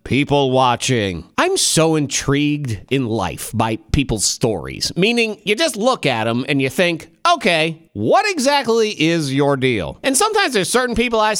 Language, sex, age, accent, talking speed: English, male, 40-59, American, 165 wpm